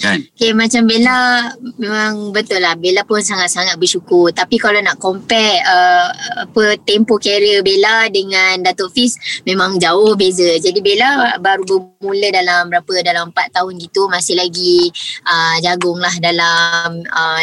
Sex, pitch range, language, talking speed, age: male, 185-225 Hz, Malay, 145 wpm, 20-39